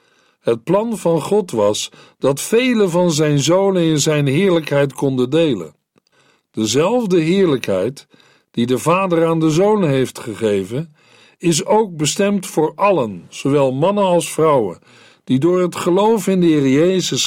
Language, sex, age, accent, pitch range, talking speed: Dutch, male, 60-79, Dutch, 140-185 Hz, 145 wpm